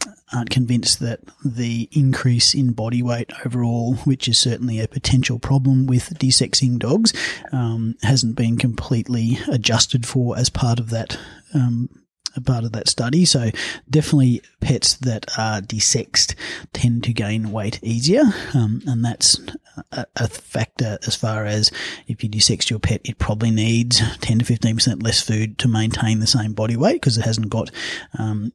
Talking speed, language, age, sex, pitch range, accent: 160 wpm, English, 30-49, male, 110-125 Hz, Australian